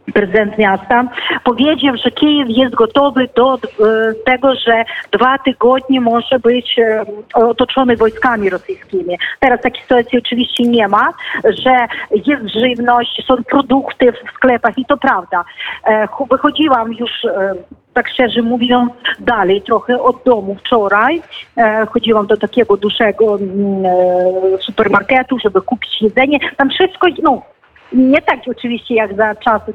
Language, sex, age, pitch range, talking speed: Polish, female, 40-59, 230-280 Hz, 120 wpm